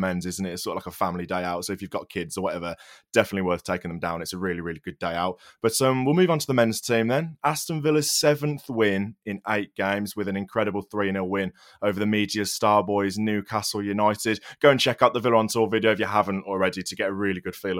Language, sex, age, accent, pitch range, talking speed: English, male, 20-39, British, 100-130 Hz, 260 wpm